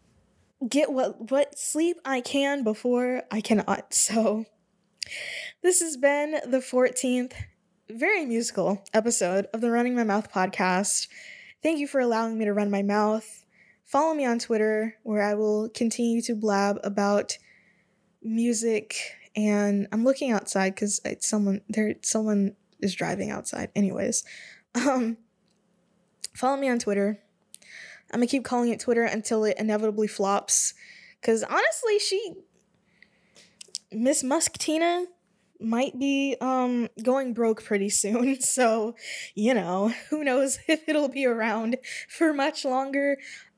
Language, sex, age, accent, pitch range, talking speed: English, female, 10-29, American, 205-275 Hz, 135 wpm